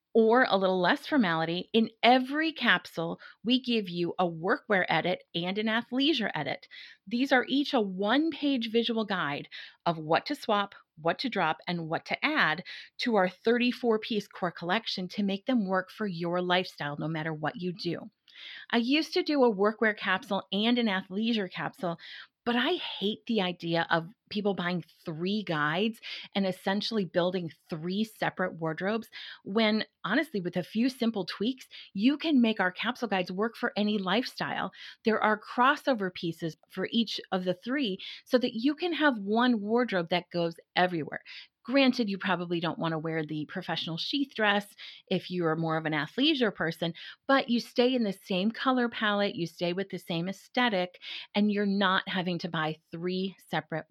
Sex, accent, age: female, American, 30-49